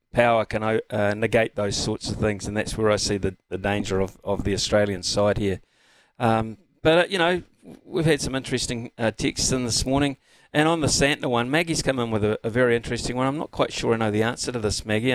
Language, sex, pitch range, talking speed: English, male, 105-130 Hz, 240 wpm